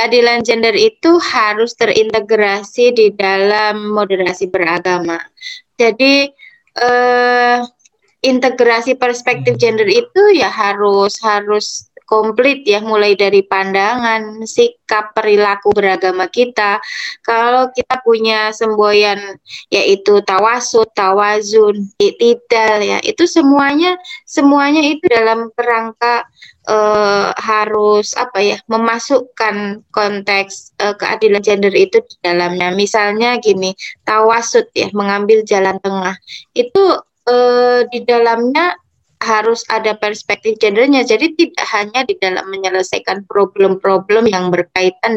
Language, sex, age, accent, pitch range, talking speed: Indonesian, female, 20-39, native, 200-245 Hz, 105 wpm